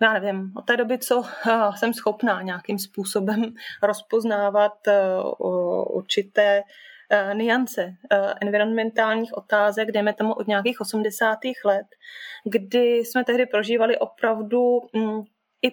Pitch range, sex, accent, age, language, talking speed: 210-235 Hz, female, native, 20-39, Czech, 105 wpm